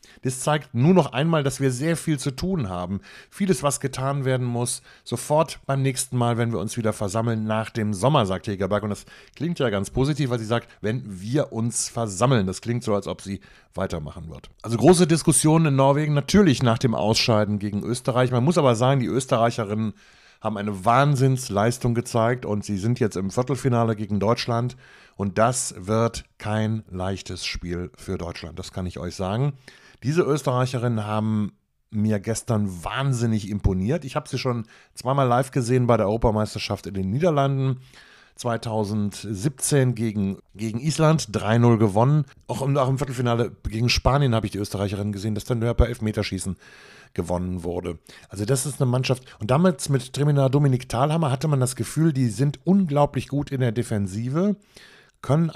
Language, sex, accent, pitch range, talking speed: German, male, German, 105-135 Hz, 175 wpm